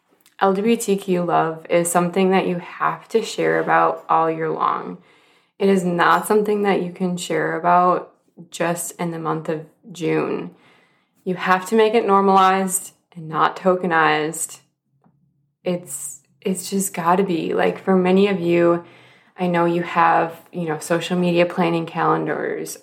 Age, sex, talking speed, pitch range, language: 20-39, female, 150 wpm, 160-185 Hz, English